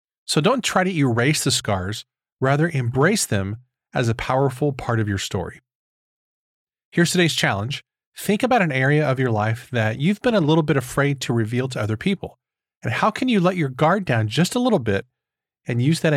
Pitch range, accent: 120-165 Hz, American